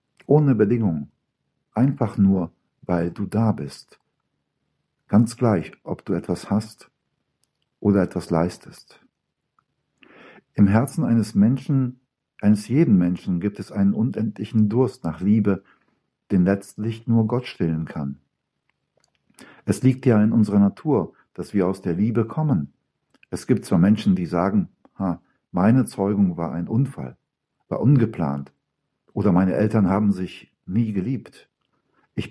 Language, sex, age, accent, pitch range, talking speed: German, male, 60-79, German, 90-120 Hz, 130 wpm